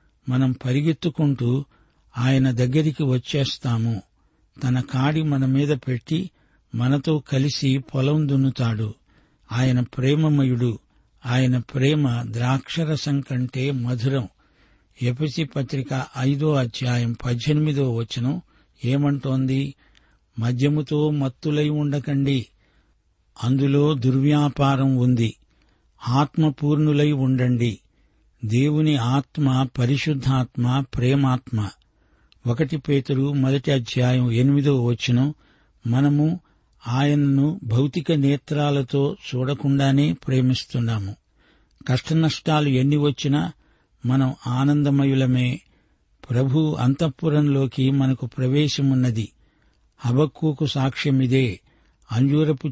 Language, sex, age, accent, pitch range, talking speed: Telugu, male, 50-69, native, 125-145 Hz, 70 wpm